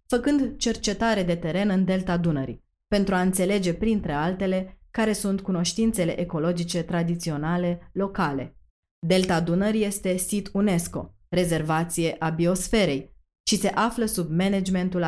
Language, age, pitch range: Romanian, 20-39, 170-205 Hz